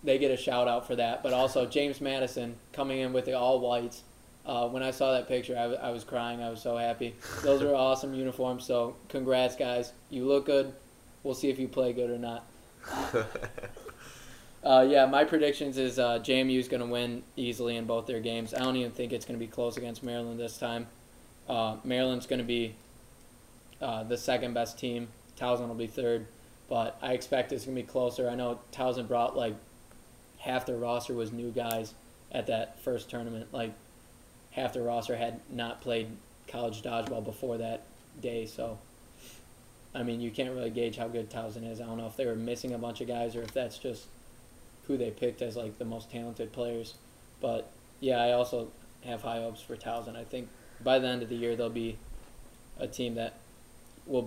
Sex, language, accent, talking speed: male, English, American, 200 wpm